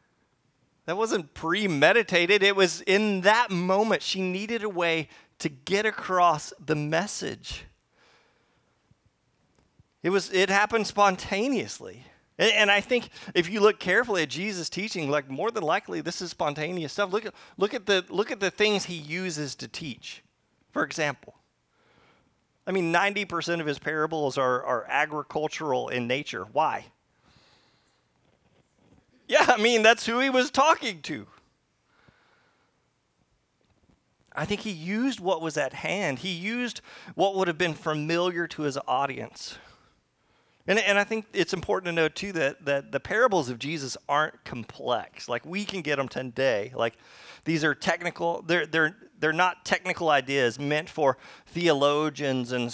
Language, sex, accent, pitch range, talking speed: English, male, American, 150-200 Hz, 150 wpm